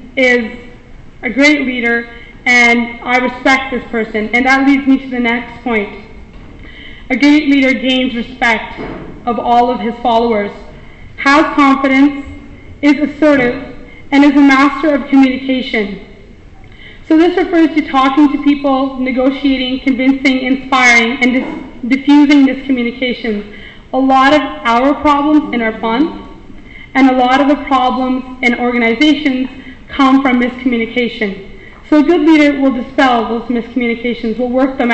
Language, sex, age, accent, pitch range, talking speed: English, female, 20-39, American, 245-290 Hz, 135 wpm